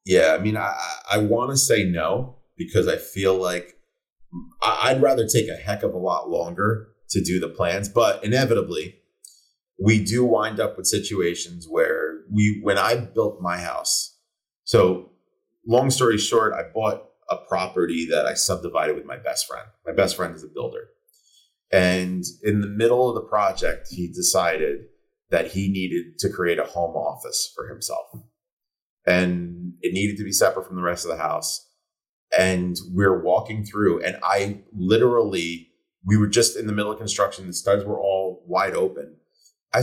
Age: 30-49